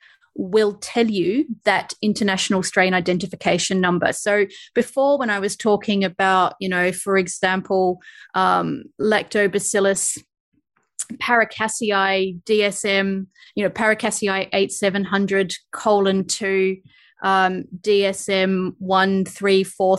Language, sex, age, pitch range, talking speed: English, female, 30-49, 190-215 Hz, 95 wpm